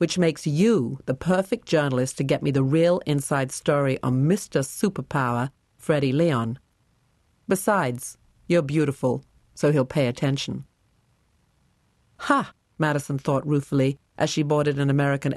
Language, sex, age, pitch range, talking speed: English, female, 50-69, 135-165 Hz, 135 wpm